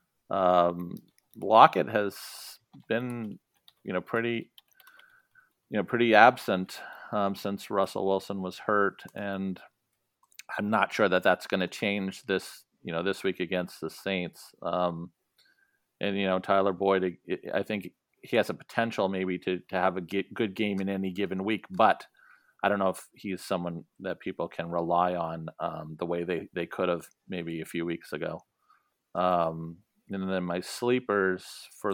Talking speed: 165 wpm